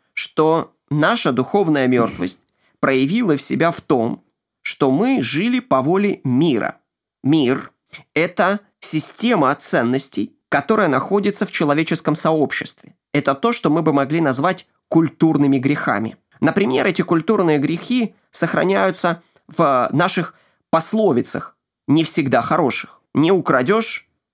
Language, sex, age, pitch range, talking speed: Ukrainian, male, 20-39, 135-185 Hz, 115 wpm